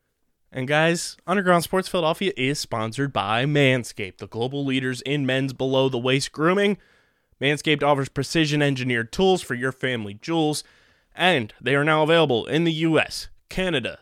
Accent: American